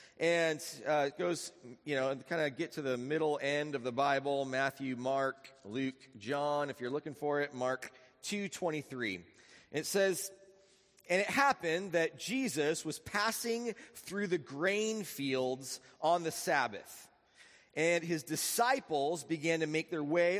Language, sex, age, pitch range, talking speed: English, male, 30-49, 140-190 Hz, 150 wpm